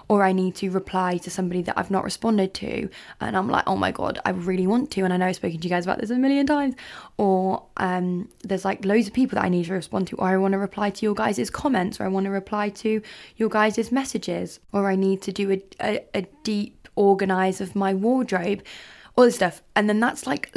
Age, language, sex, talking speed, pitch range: 20-39, English, female, 250 wpm, 185-220 Hz